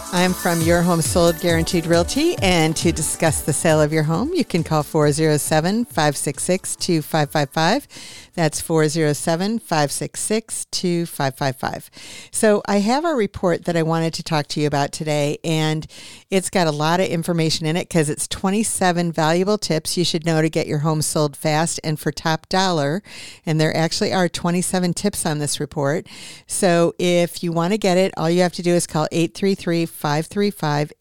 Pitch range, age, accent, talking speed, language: 150-175 Hz, 50-69, American, 165 wpm, English